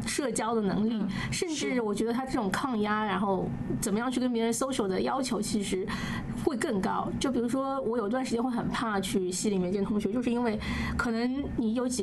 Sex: female